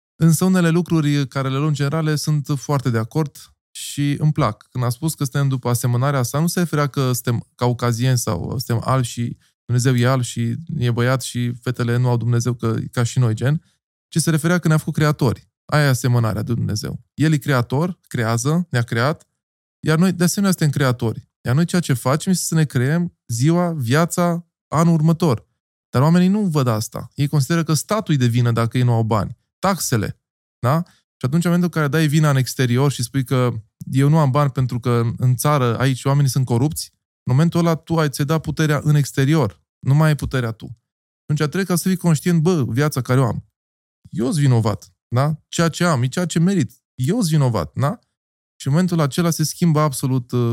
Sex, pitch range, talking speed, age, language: male, 125-155 Hz, 210 wpm, 20-39, Romanian